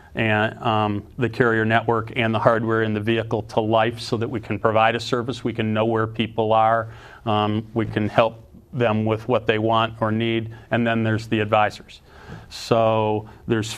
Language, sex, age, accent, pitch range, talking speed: English, male, 40-59, American, 110-120 Hz, 190 wpm